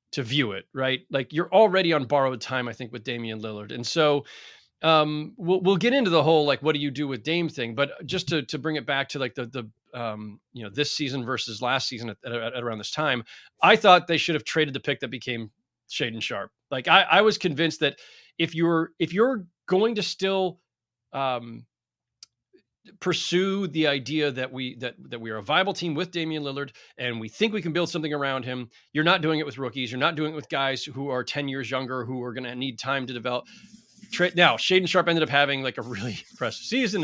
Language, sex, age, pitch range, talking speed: English, male, 30-49, 125-165 Hz, 235 wpm